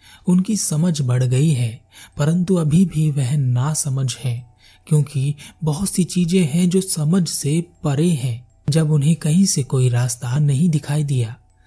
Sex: male